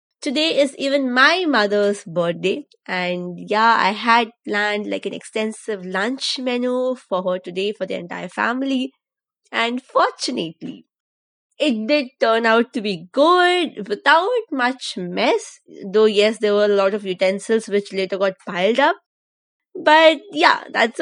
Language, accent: English, Indian